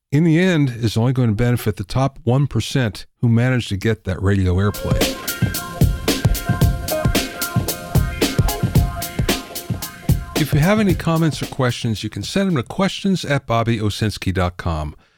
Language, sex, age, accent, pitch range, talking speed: English, male, 50-69, American, 110-155 Hz, 130 wpm